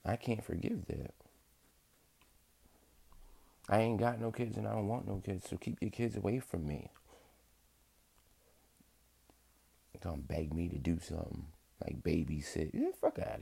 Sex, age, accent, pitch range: male, 30-49, American, 70-100 Hz